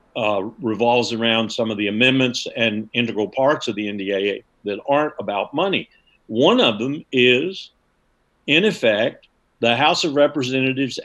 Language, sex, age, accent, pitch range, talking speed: English, male, 50-69, American, 110-150 Hz, 145 wpm